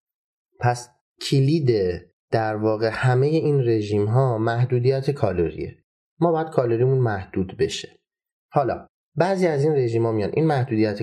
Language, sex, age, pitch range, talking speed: Persian, male, 30-49, 100-130 Hz, 130 wpm